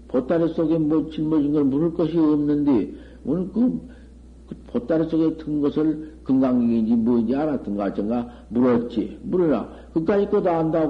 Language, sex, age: Korean, male, 60-79